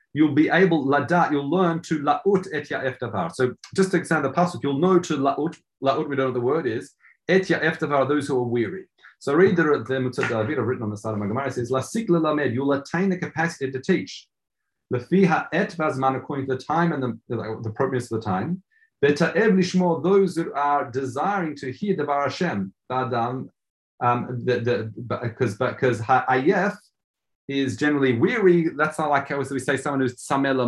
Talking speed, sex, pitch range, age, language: 200 wpm, male, 120-155 Hz, 30-49, English